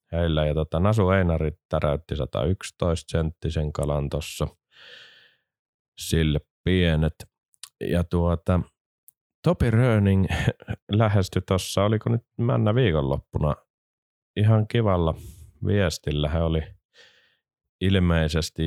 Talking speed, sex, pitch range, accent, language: 90 wpm, male, 75-95 Hz, native, Finnish